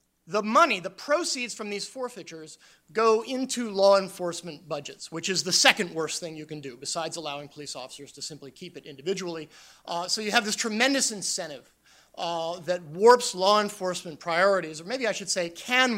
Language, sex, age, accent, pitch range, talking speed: English, male, 30-49, American, 155-195 Hz, 185 wpm